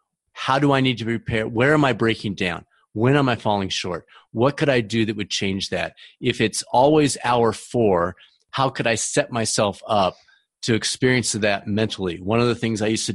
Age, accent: 40-59, American